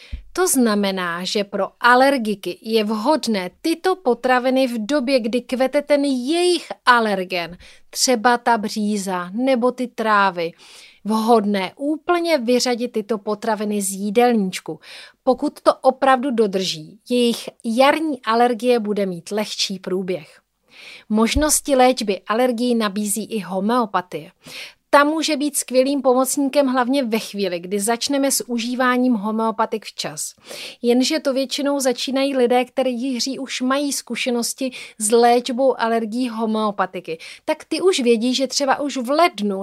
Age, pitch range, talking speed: 30-49, 220-270 Hz, 125 wpm